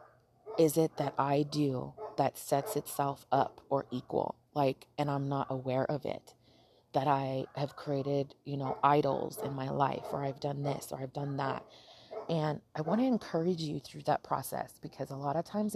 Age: 30-49